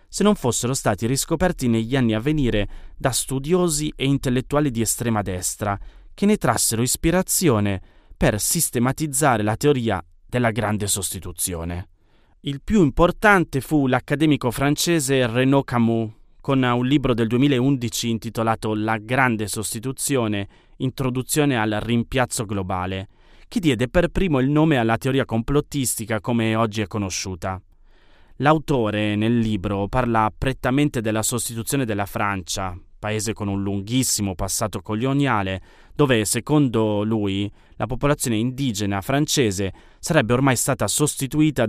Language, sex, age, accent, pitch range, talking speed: Italian, male, 30-49, native, 105-135 Hz, 125 wpm